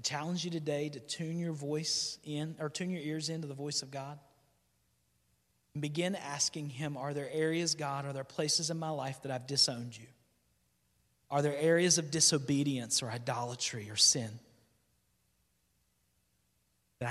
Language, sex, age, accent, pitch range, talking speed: English, male, 40-59, American, 120-160 Hz, 160 wpm